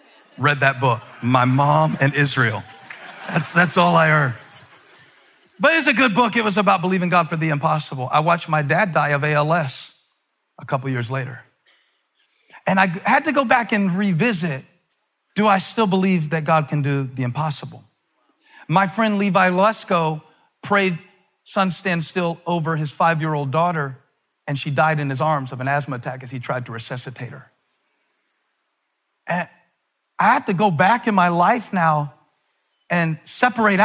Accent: American